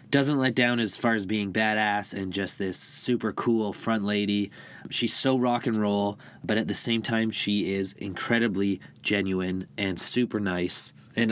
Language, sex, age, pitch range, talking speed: English, male, 20-39, 100-115 Hz, 175 wpm